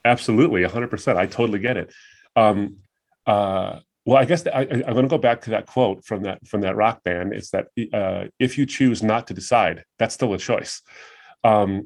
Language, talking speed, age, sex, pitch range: English, 190 wpm, 30-49, male, 95-115 Hz